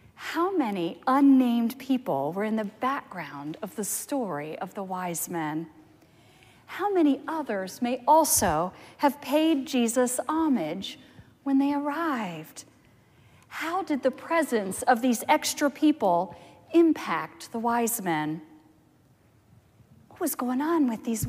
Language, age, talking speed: English, 40-59, 125 wpm